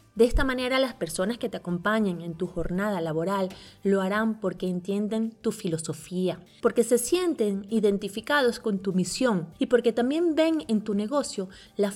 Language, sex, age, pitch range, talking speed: Spanish, female, 20-39, 180-240 Hz, 165 wpm